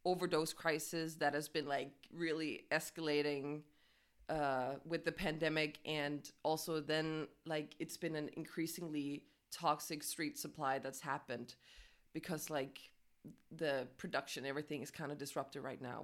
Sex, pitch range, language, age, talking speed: female, 145-170 Hz, English, 20-39, 135 wpm